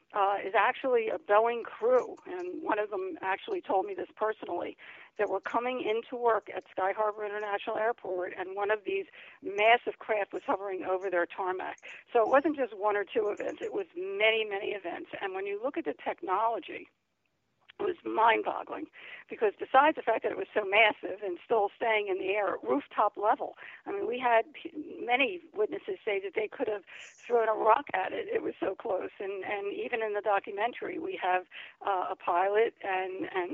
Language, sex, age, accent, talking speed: English, female, 50-69, American, 195 wpm